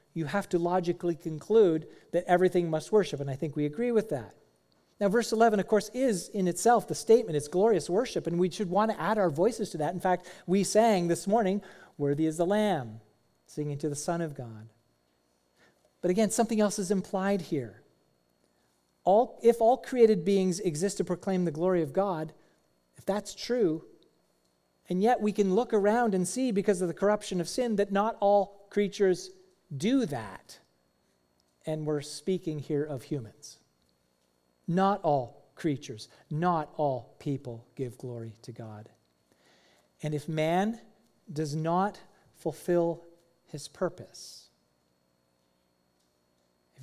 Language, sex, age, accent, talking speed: English, male, 40-59, American, 155 wpm